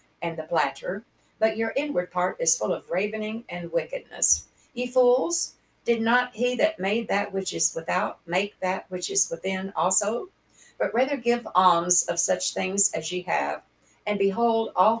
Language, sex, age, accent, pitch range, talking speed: English, female, 50-69, American, 180-230 Hz, 170 wpm